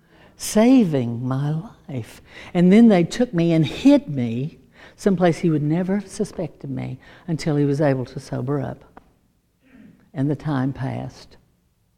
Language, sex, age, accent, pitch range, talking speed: English, female, 60-79, American, 130-175 Hz, 145 wpm